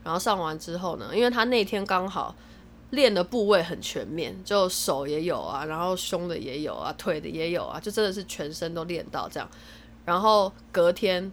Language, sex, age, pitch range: Chinese, female, 20-39, 165-205 Hz